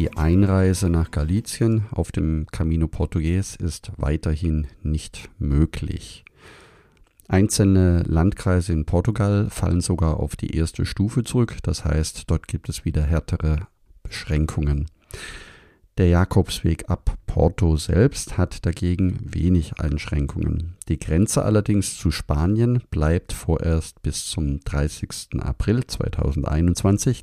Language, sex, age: German, male, 50-69